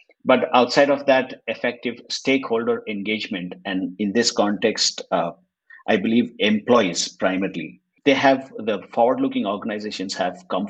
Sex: male